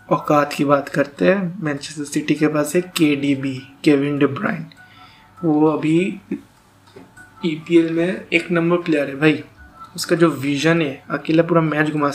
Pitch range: 145-165 Hz